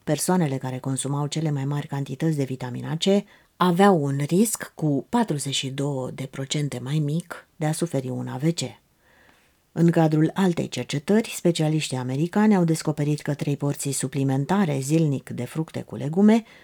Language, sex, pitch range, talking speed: Romanian, female, 135-175 Hz, 140 wpm